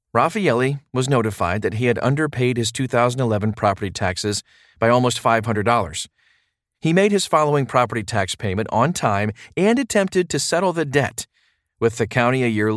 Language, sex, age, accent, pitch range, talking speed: English, male, 40-59, American, 105-140 Hz, 160 wpm